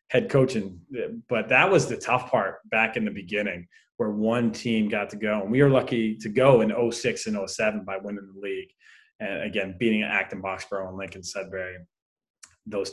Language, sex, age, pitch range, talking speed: English, male, 20-39, 110-155 Hz, 190 wpm